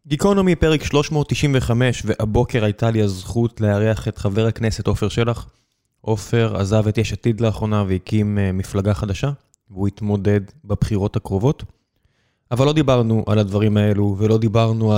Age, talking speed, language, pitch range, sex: 20-39, 135 wpm, Hebrew, 105-125 Hz, male